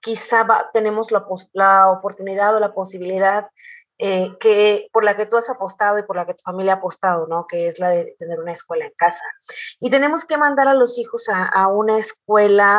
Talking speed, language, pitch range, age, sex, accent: 225 wpm, Spanish, 195-255 Hz, 30-49, female, Mexican